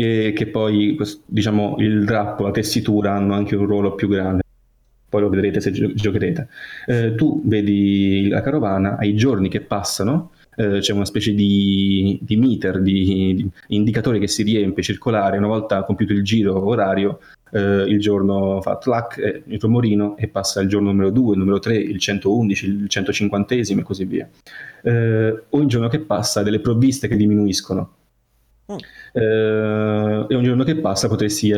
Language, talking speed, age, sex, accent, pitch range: Italian, 165 wpm, 20-39, male, native, 100-110 Hz